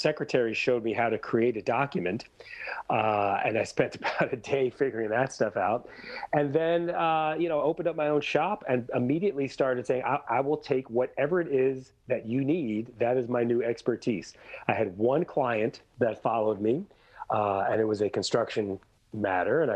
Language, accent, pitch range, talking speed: English, American, 115-145 Hz, 190 wpm